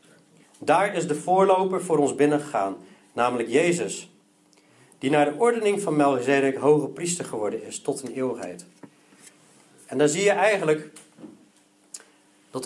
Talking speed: 135 wpm